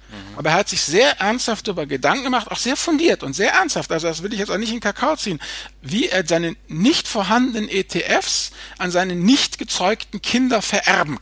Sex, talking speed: male, 200 wpm